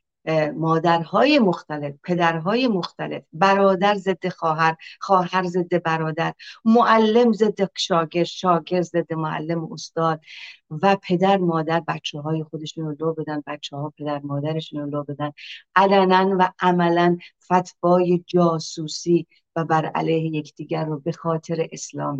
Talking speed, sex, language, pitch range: 120 wpm, female, Persian, 160-190 Hz